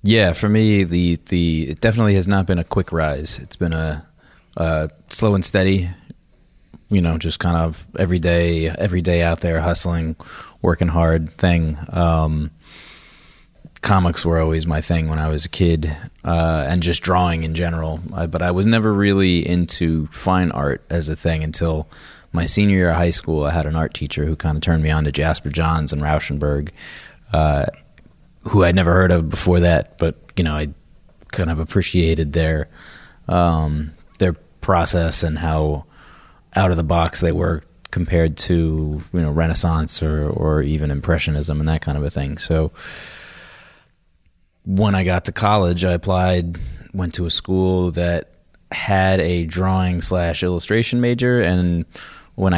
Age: 30-49